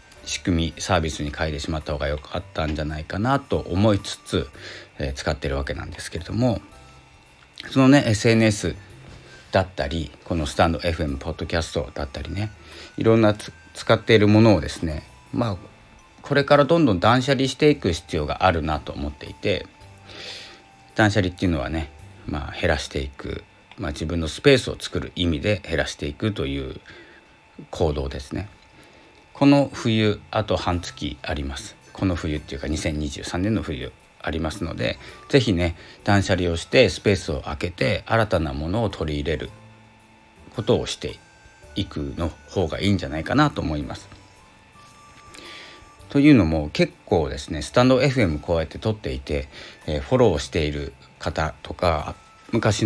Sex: male